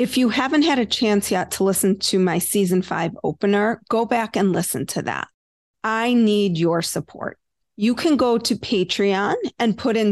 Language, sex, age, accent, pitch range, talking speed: English, female, 40-59, American, 190-235 Hz, 190 wpm